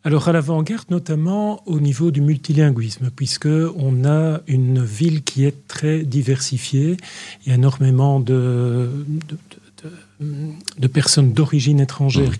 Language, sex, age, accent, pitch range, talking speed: French, male, 40-59, French, 125-155 Hz, 135 wpm